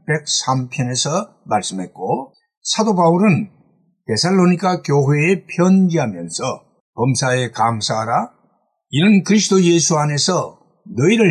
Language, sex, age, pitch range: Korean, male, 60-79, 135-190 Hz